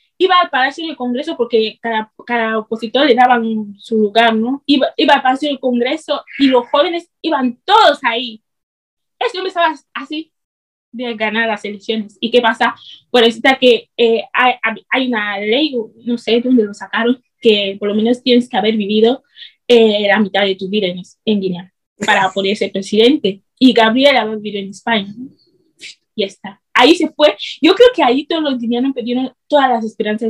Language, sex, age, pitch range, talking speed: Spanish, female, 20-39, 225-290 Hz, 190 wpm